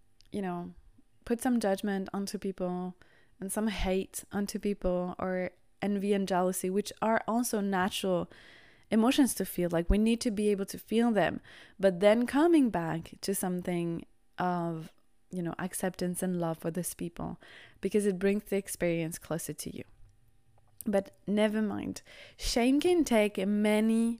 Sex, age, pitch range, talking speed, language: female, 20-39, 180-210 Hz, 155 wpm, English